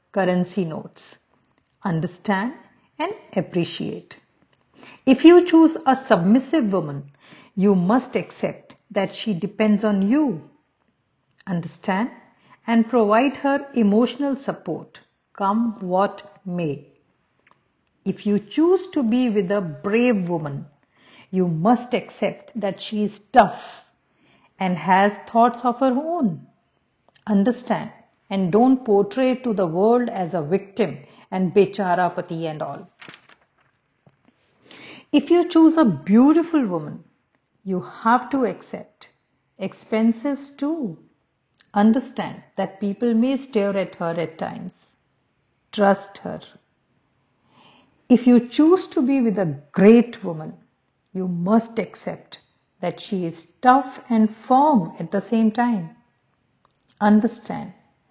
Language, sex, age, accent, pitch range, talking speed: Hindi, female, 50-69, native, 185-245 Hz, 115 wpm